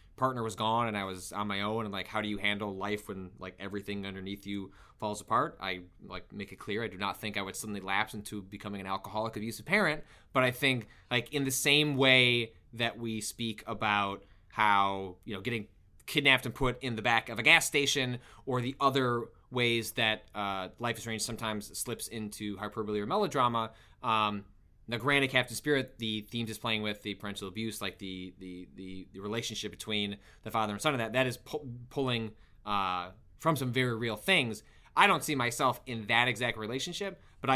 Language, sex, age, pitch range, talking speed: English, male, 20-39, 100-120 Hz, 200 wpm